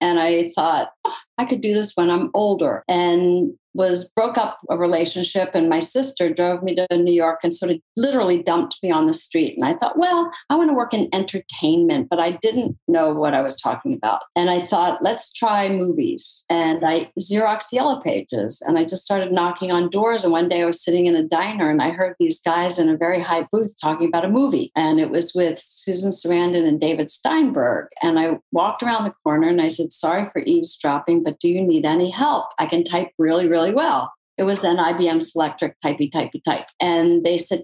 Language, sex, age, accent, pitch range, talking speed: English, female, 50-69, American, 170-220 Hz, 220 wpm